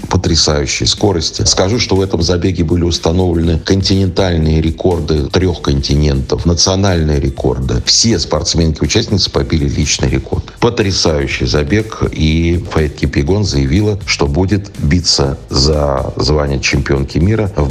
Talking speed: 115 wpm